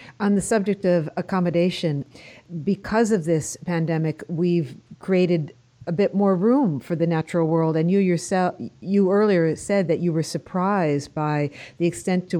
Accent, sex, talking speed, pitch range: American, female, 160 wpm, 165-205 Hz